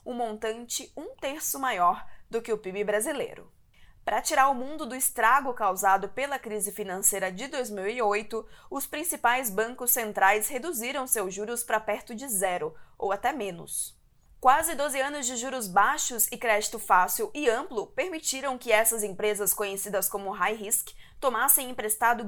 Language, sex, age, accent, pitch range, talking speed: Portuguese, female, 20-39, Brazilian, 210-265 Hz, 155 wpm